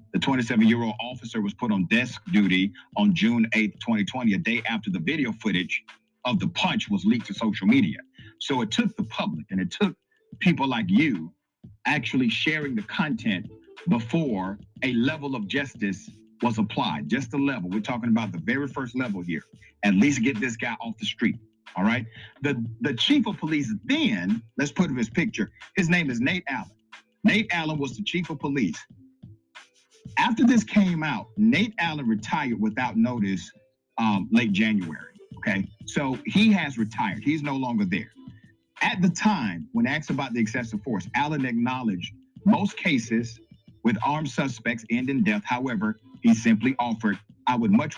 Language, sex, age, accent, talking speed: English, male, 50-69, American, 175 wpm